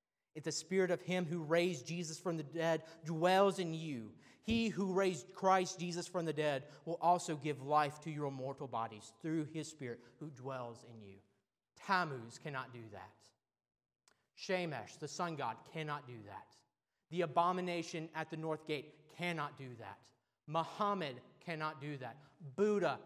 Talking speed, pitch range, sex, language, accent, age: 160 wpm, 120-160 Hz, male, English, American, 30-49